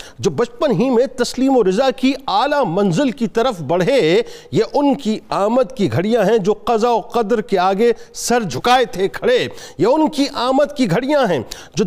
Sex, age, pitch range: male, 50-69, 225-280 Hz